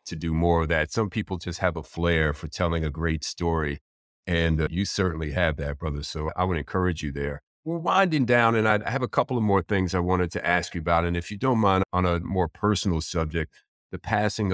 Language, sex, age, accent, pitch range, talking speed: English, male, 40-59, American, 85-105 Hz, 240 wpm